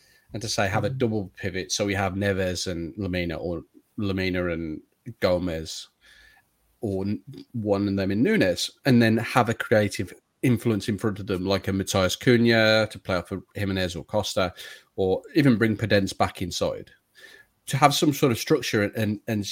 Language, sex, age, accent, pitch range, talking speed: English, male, 30-49, British, 105-130 Hz, 180 wpm